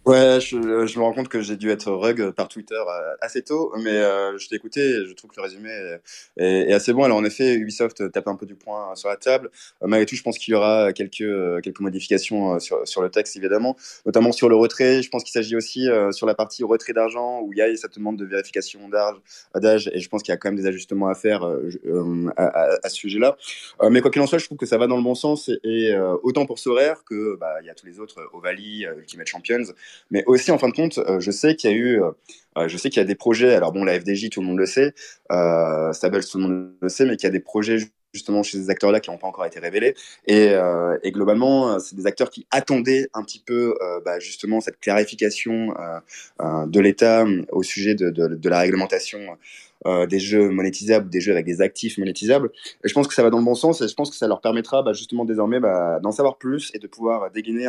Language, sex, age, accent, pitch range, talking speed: English, male, 20-39, French, 100-125 Hz, 260 wpm